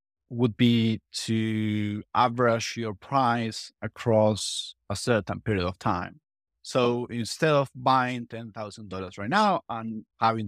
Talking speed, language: 120 wpm, English